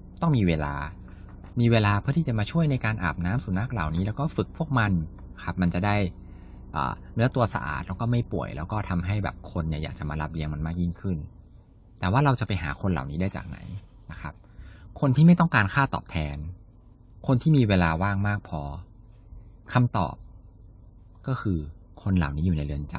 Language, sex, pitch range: Thai, male, 85-115 Hz